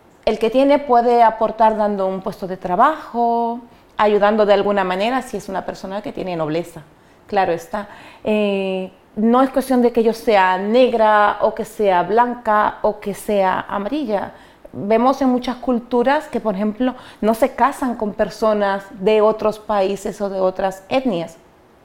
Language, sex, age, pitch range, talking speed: Spanish, female, 40-59, 200-255 Hz, 160 wpm